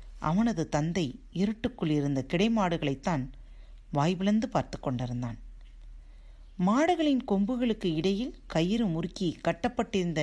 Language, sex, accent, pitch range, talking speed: Tamil, female, native, 135-210 Hz, 90 wpm